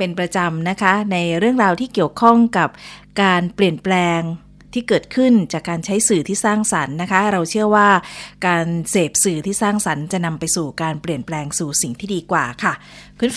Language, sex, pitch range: Thai, female, 170-210 Hz